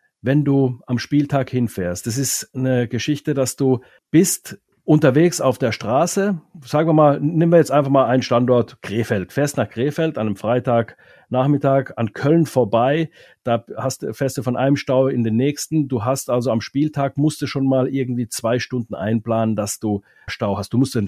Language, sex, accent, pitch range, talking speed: German, male, German, 115-140 Hz, 185 wpm